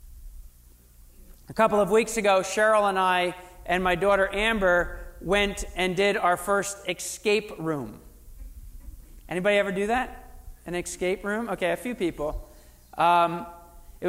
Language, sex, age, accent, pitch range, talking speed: English, male, 40-59, American, 170-215 Hz, 135 wpm